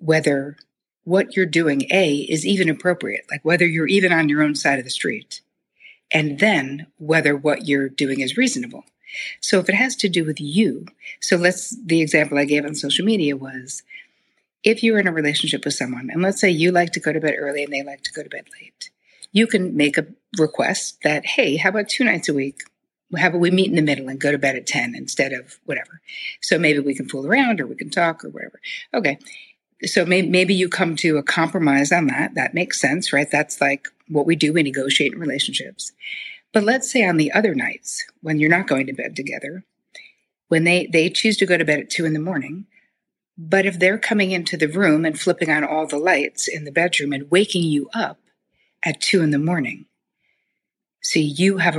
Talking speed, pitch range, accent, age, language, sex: 220 wpm, 145-190 Hz, American, 60-79, English, female